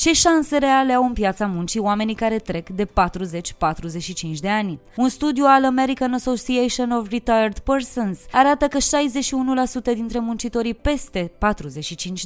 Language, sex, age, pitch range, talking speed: Romanian, female, 20-39, 195-265 Hz, 140 wpm